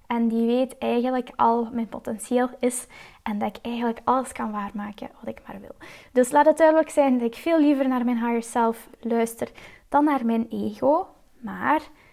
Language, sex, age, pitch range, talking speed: Dutch, female, 10-29, 235-275 Hz, 195 wpm